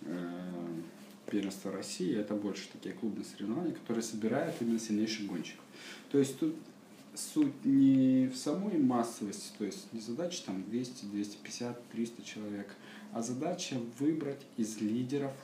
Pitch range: 100-130 Hz